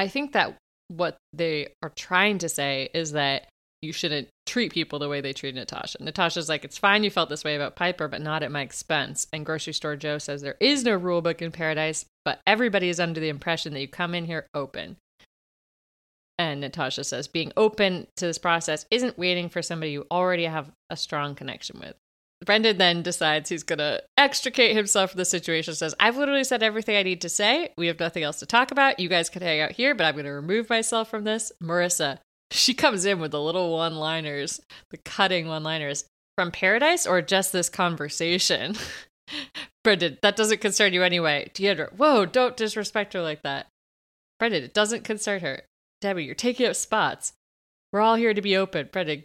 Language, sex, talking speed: English, female, 200 wpm